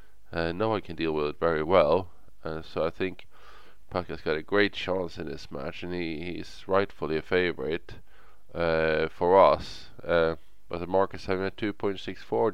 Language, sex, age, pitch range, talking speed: English, male, 20-39, 85-95 Hz, 175 wpm